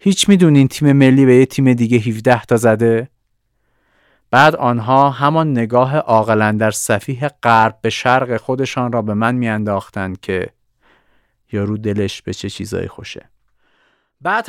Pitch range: 110-140 Hz